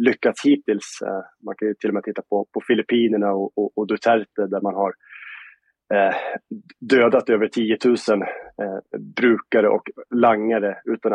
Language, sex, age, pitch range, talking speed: Swedish, male, 30-49, 105-120 Hz, 155 wpm